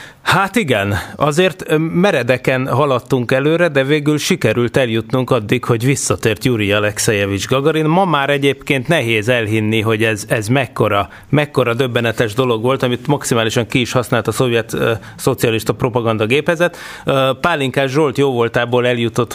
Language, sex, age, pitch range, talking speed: Hungarian, male, 30-49, 120-155 Hz, 130 wpm